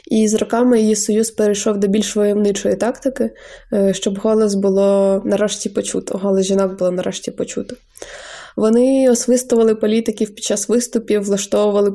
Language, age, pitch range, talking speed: Ukrainian, 20-39, 200-230 Hz, 135 wpm